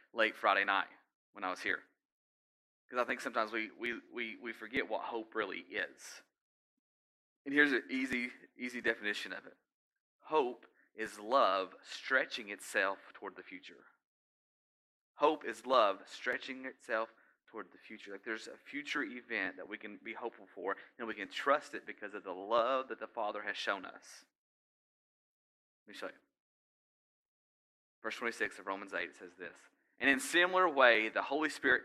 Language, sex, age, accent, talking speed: English, male, 30-49, American, 170 wpm